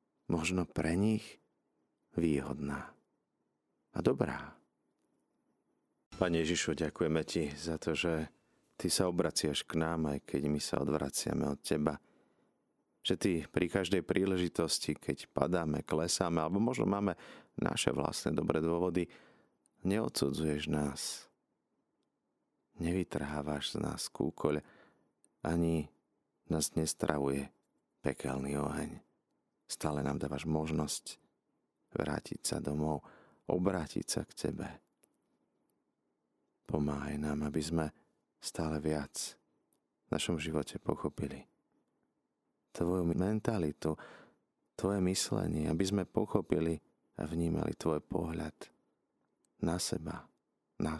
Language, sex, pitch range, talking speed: Slovak, male, 75-85 Hz, 100 wpm